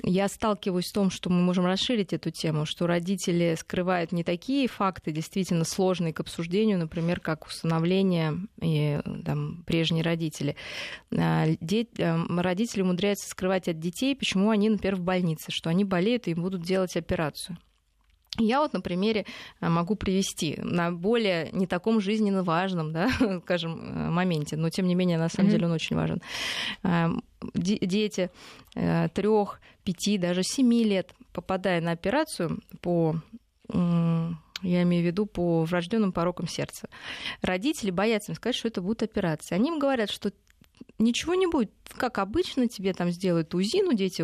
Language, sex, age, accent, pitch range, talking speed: Russian, female, 20-39, native, 170-215 Hz, 145 wpm